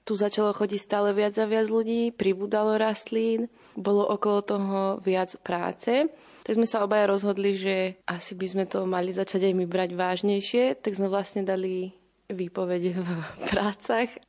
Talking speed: 160 wpm